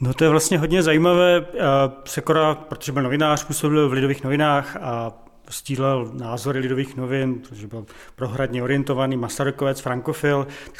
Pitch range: 130-145 Hz